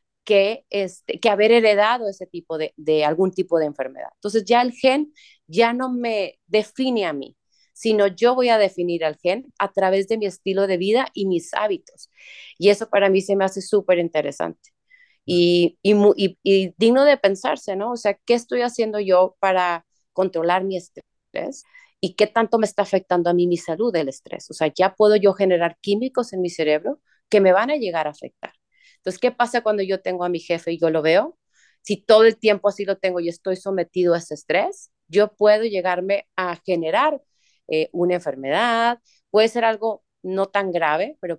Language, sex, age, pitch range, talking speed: Spanish, female, 30-49, 180-230 Hz, 200 wpm